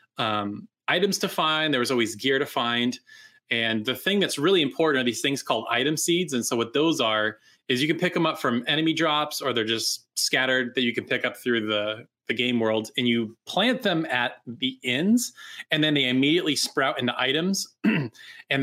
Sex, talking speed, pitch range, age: male, 210 wpm, 115-150 Hz, 20-39